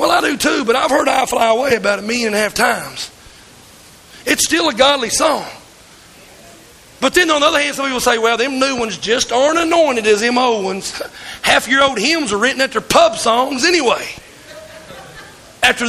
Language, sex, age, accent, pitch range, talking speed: English, male, 40-59, American, 235-315 Hz, 200 wpm